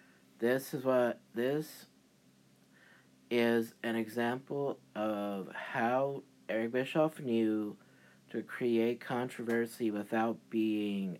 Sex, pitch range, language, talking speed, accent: male, 90-125 Hz, English, 90 wpm, American